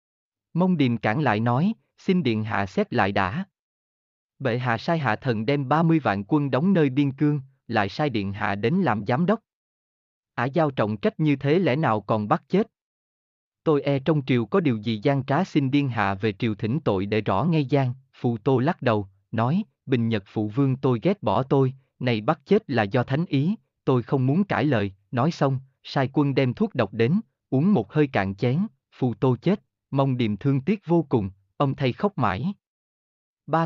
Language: Vietnamese